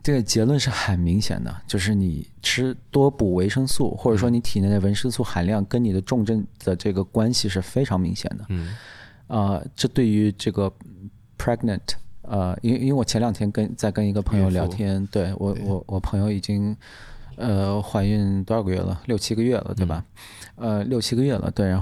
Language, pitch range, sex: Chinese, 95-115 Hz, male